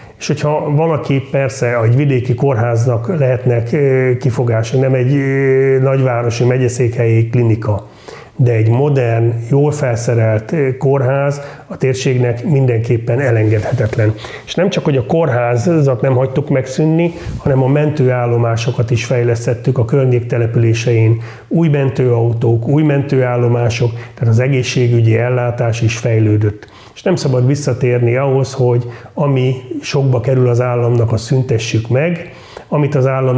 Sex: male